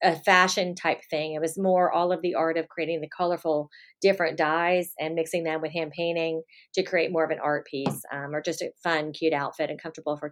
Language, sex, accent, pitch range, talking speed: English, female, American, 160-185 Hz, 235 wpm